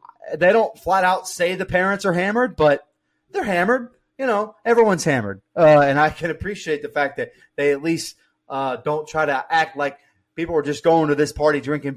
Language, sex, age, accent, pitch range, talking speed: English, male, 30-49, American, 135-185 Hz, 205 wpm